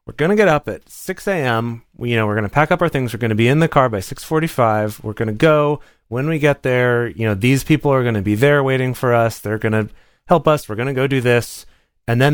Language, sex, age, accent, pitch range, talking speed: English, male, 30-49, American, 105-135 Hz, 260 wpm